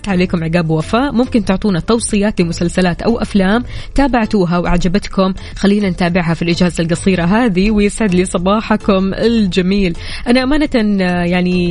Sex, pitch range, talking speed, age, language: female, 185-245 Hz, 125 wpm, 20-39, Arabic